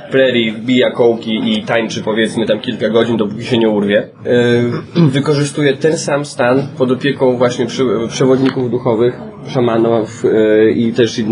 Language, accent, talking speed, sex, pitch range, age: Polish, native, 125 wpm, male, 115-145 Hz, 20-39